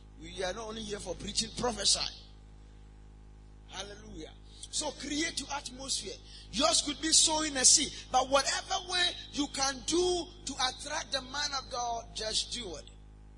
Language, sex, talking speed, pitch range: English, male, 155 wpm, 160-240 Hz